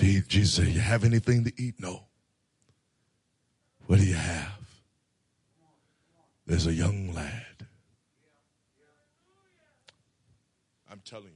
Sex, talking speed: male, 95 wpm